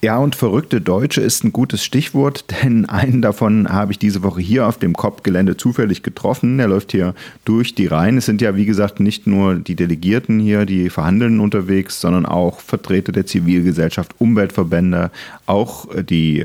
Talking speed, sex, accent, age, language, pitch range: 175 wpm, male, German, 40-59, German, 100-125 Hz